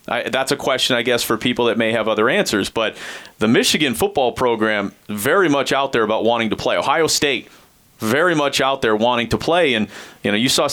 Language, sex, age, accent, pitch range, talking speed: English, male, 30-49, American, 115-140 Hz, 220 wpm